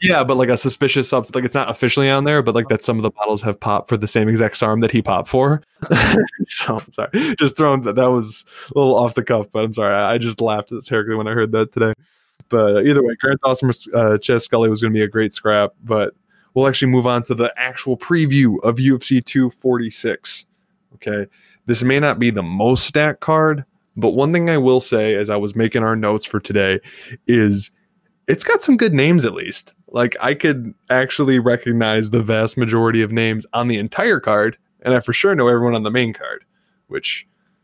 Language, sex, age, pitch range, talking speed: English, male, 20-39, 110-135 Hz, 220 wpm